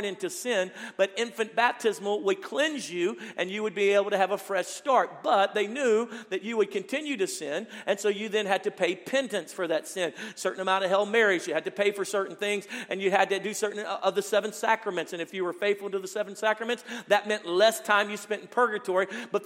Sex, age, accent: male, 50-69, American